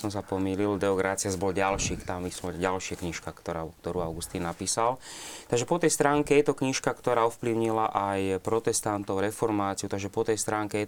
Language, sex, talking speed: Slovak, male, 170 wpm